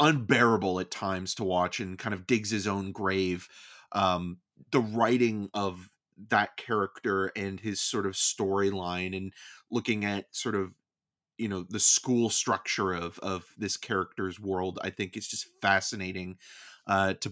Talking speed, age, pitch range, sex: 155 wpm, 30-49, 95-115 Hz, male